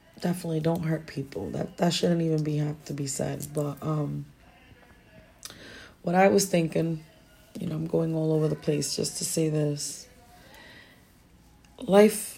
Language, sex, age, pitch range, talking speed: English, female, 30-49, 150-175 Hz, 155 wpm